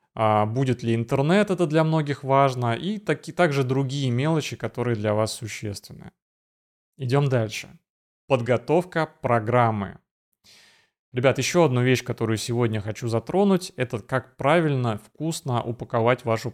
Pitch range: 115-135 Hz